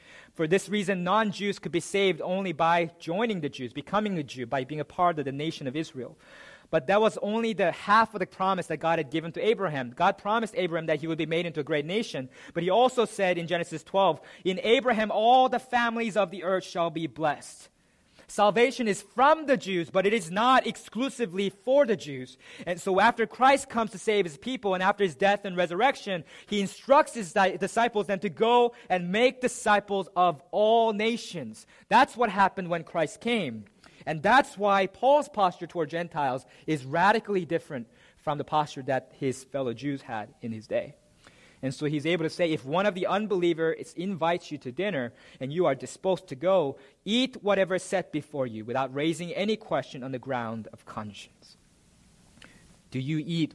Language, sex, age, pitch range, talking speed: English, male, 30-49, 140-205 Hz, 195 wpm